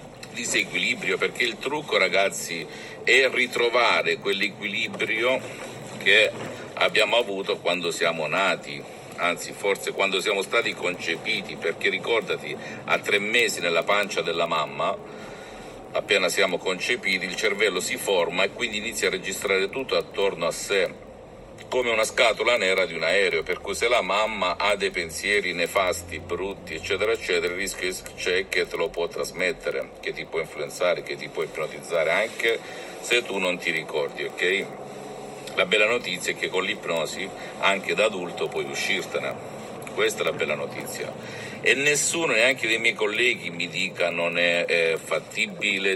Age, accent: 50-69, native